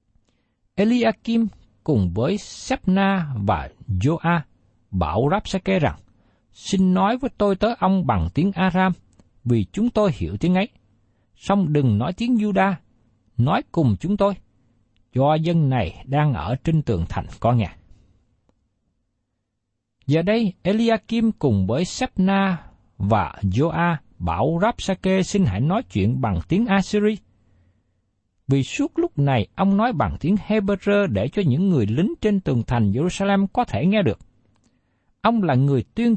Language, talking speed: Vietnamese, 145 wpm